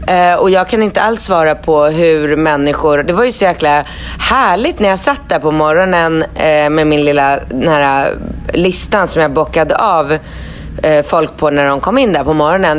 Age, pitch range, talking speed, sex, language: 30-49, 150-180 Hz, 195 wpm, female, Swedish